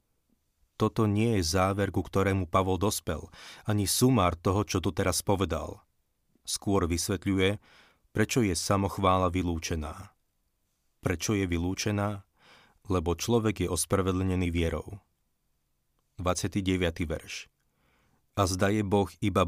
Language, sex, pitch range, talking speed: Slovak, male, 90-105 Hz, 110 wpm